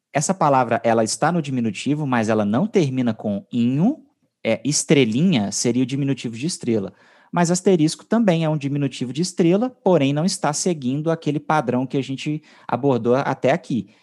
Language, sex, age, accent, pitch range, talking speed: English, male, 20-39, Brazilian, 115-165 Hz, 165 wpm